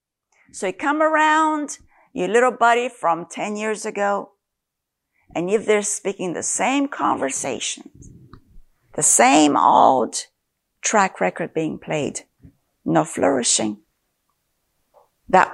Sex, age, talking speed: female, 50-69, 110 wpm